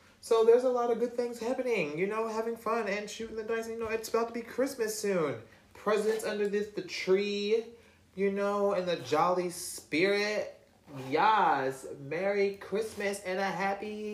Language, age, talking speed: English, 30-49, 175 wpm